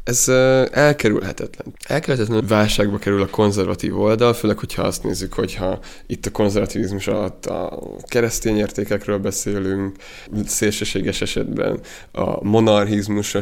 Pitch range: 95-110 Hz